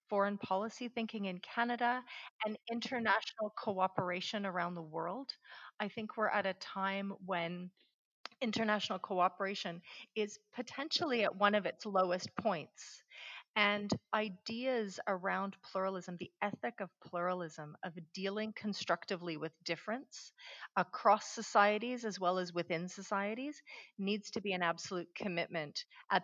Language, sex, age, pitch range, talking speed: English, female, 30-49, 175-210 Hz, 125 wpm